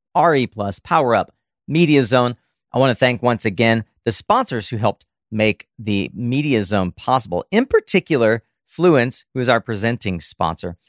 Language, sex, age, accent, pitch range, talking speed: English, male, 40-59, American, 105-140 Hz, 160 wpm